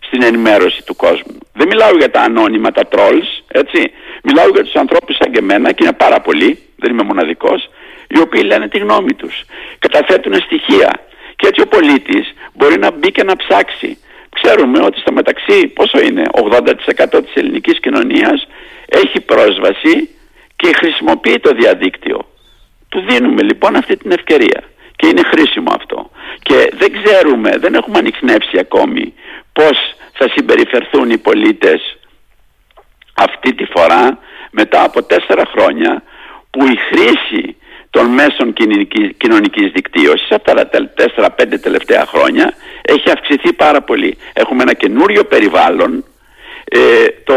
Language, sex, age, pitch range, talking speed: Greek, male, 60-79, 320-450 Hz, 140 wpm